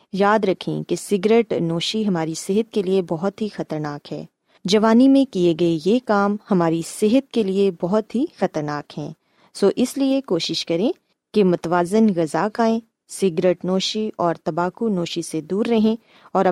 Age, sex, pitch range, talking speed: 20-39, female, 175-225 Hz, 165 wpm